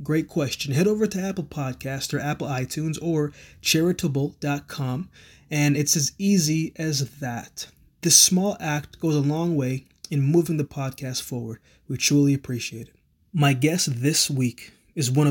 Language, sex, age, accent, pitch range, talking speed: English, male, 20-39, American, 135-165 Hz, 155 wpm